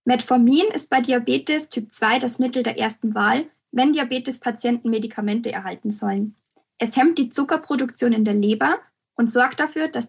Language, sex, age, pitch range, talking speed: English, female, 10-29, 225-265 Hz, 160 wpm